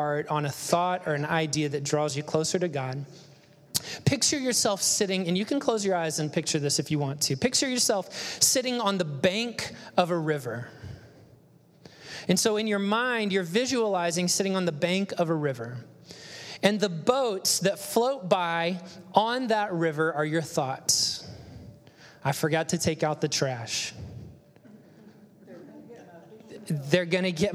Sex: male